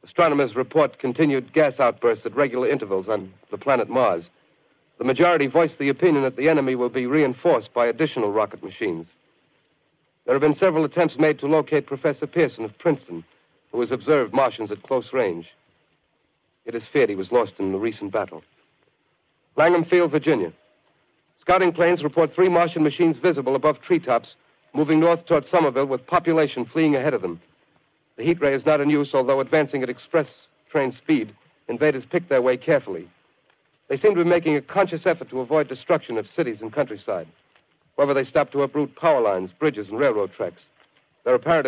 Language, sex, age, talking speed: English, male, 60-79, 180 wpm